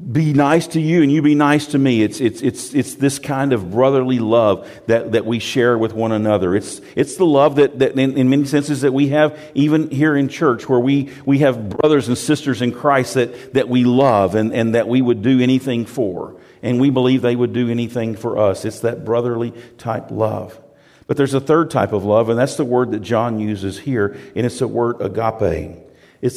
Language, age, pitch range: English, 50-69, 120-145 Hz